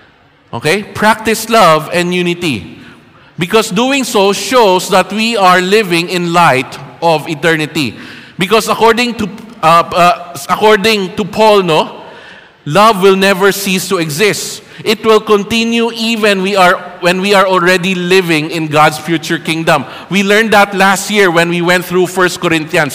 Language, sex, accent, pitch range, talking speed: English, male, Filipino, 175-215 Hz, 150 wpm